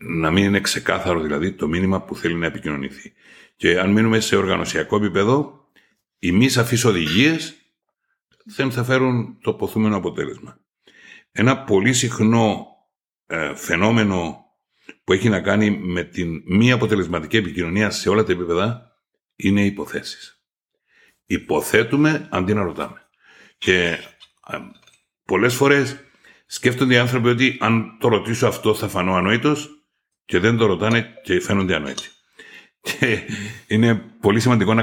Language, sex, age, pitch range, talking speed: Greek, male, 60-79, 100-125 Hz, 135 wpm